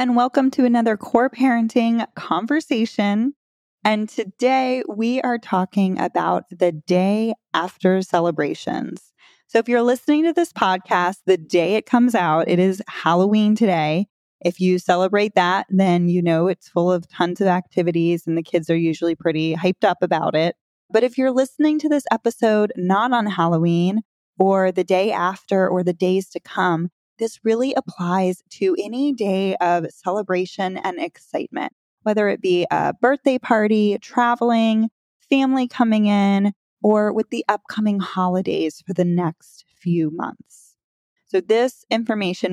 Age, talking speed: 20-39, 150 wpm